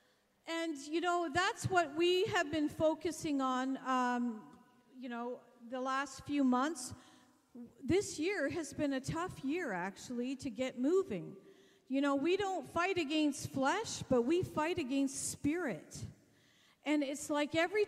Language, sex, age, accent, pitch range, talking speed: English, female, 50-69, American, 235-300 Hz, 150 wpm